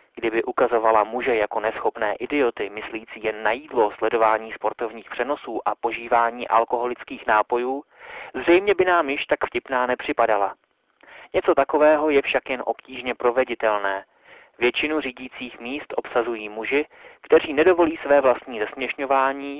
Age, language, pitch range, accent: 30-49, Czech, 115-135 Hz, native